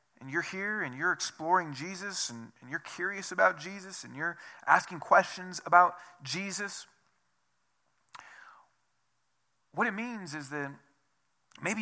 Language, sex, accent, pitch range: English, male, American, 120-155 Hz